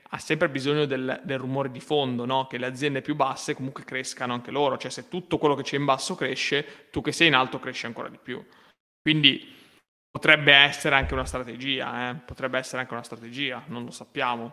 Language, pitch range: Italian, 125-140 Hz